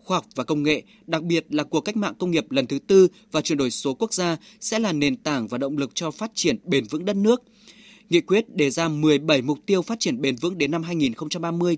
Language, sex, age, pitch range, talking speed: Vietnamese, male, 20-39, 150-210 Hz, 255 wpm